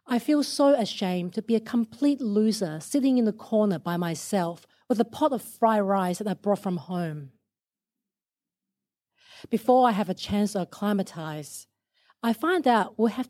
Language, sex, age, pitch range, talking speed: English, female, 40-59, 185-240 Hz, 170 wpm